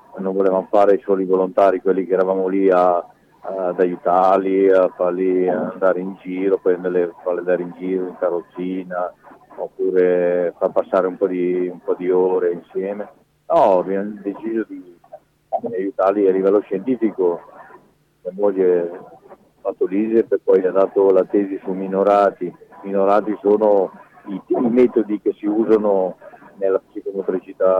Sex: male